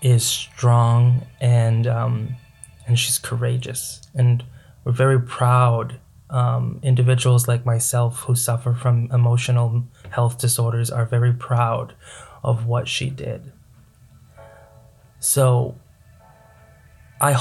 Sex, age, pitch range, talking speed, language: male, 20-39, 120-135 Hz, 105 wpm, English